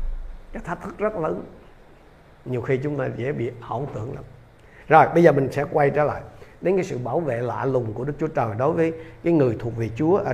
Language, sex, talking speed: Vietnamese, male, 230 wpm